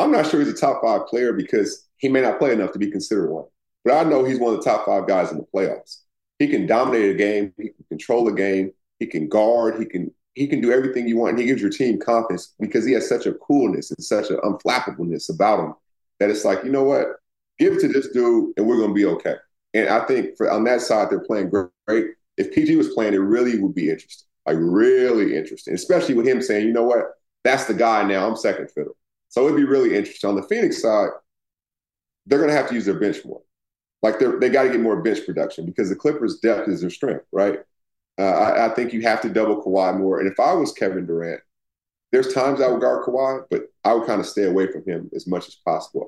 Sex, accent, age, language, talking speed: male, American, 30-49, English, 255 wpm